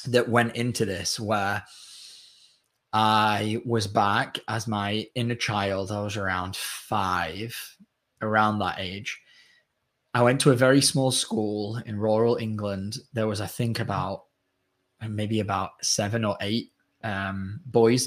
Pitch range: 105-130 Hz